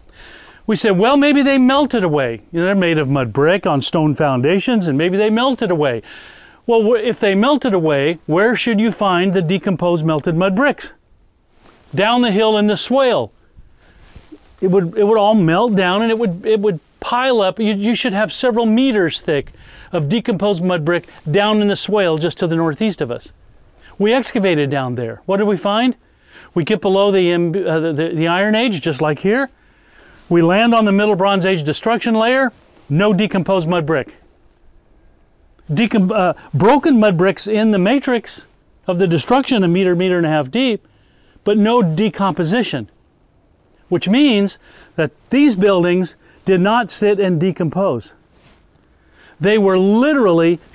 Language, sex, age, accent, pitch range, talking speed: English, male, 40-59, American, 165-220 Hz, 170 wpm